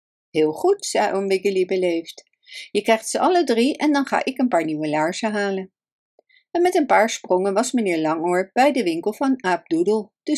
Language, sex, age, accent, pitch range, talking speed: Dutch, female, 60-79, Dutch, 180-280 Hz, 195 wpm